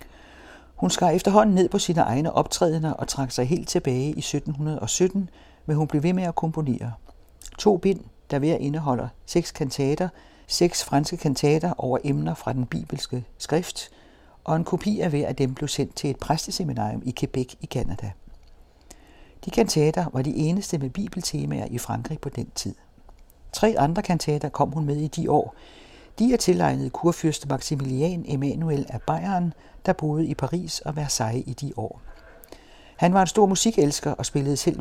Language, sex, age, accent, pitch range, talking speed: Danish, male, 60-79, native, 125-170 Hz, 170 wpm